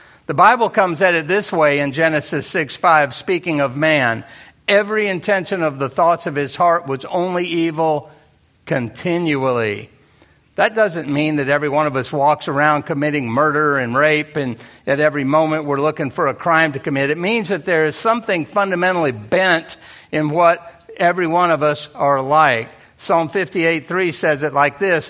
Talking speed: 175 wpm